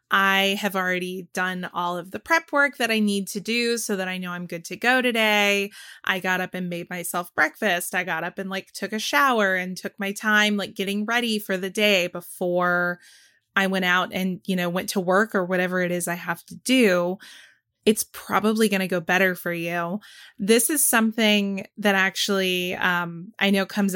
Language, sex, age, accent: English, female, 20-39, American